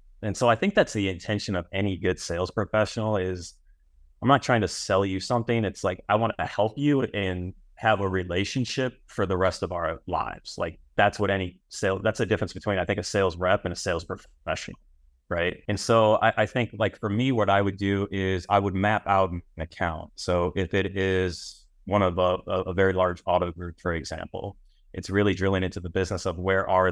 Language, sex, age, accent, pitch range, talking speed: English, male, 30-49, American, 90-105 Hz, 220 wpm